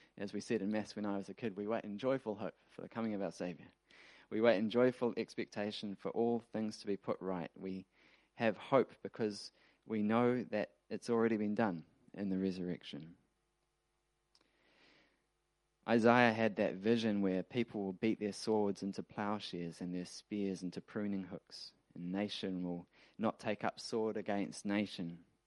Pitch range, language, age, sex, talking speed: 90-110 Hz, English, 20-39, male, 175 wpm